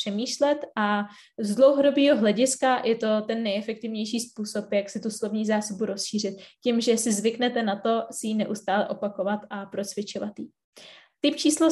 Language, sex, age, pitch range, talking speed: Czech, female, 20-39, 210-250 Hz, 160 wpm